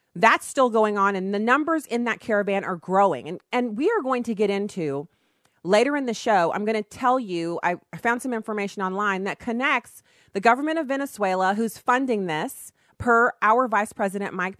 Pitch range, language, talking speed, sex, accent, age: 190-245 Hz, English, 195 wpm, female, American, 30-49